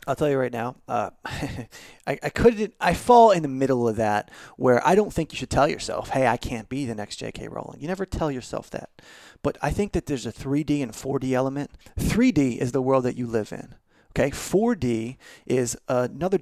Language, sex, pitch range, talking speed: English, male, 125-155 Hz, 215 wpm